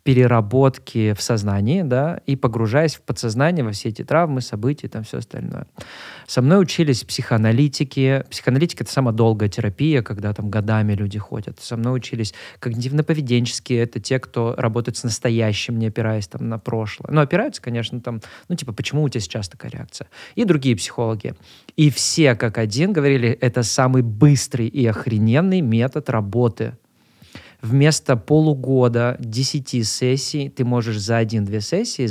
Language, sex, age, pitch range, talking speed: Russian, male, 20-39, 115-135 Hz, 150 wpm